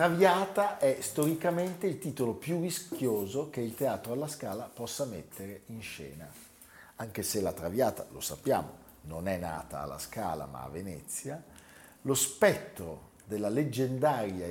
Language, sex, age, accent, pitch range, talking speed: Italian, male, 50-69, native, 90-135 Hz, 140 wpm